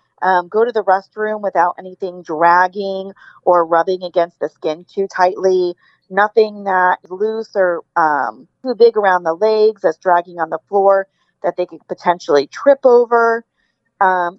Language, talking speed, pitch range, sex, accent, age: English, 160 wpm, 180-225 Hz, female, American, 30-49